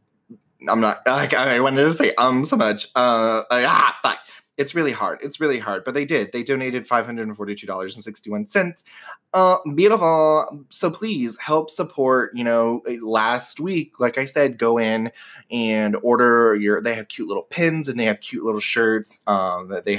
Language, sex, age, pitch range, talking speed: English, male, 20-39, 110-155 Hz, 175 wpm